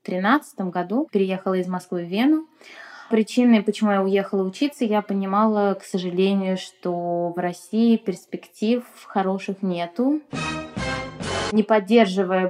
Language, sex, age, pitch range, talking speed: Russian, female, 20-39, 185-235 Hz, 115 wpm